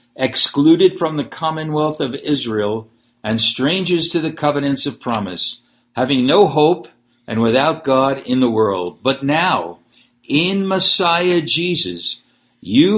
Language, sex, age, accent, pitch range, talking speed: English, male, 60-79, American, 115-160 Hz, 130 wpm